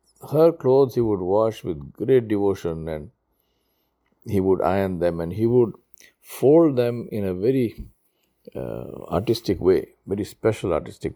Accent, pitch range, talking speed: Indian, 85-110 Hz, 145 wpm